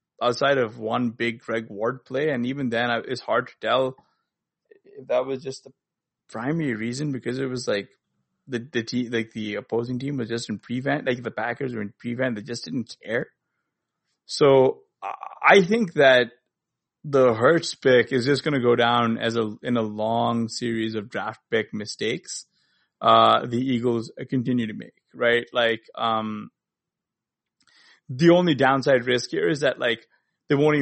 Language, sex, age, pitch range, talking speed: English, male, 20-39, 115-135 Hz, 170 wpm